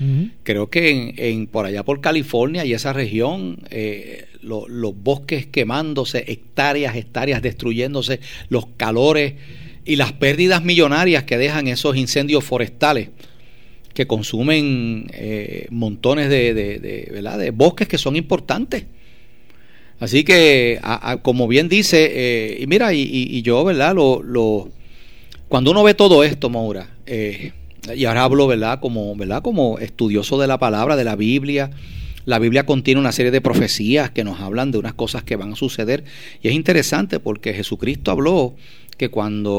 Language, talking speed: Spanish, 160 wpm